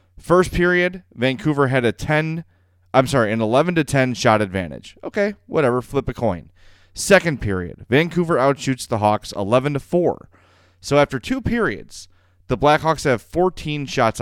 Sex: male